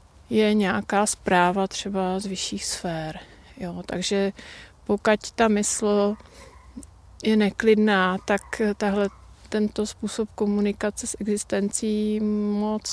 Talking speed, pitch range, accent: 100 wpm, 195-220 Hz, native